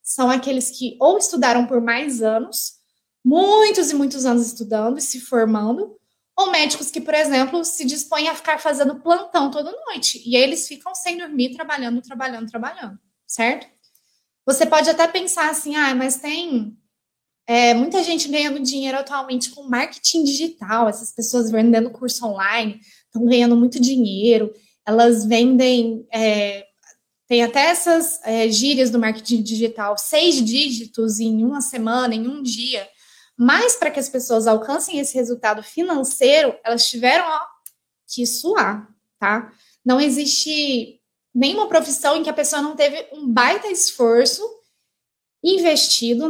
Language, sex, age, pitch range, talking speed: Portuguese, female, 20-39, 235-295 Hz, 145 wpm